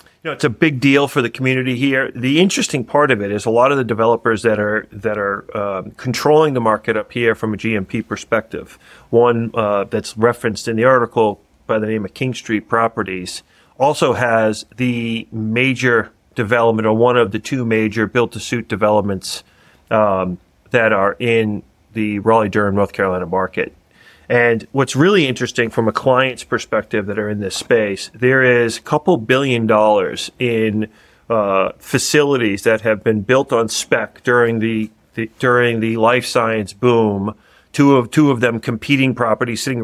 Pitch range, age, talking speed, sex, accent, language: 110-125 Hz, 40-59, 170 wpm, male, American, English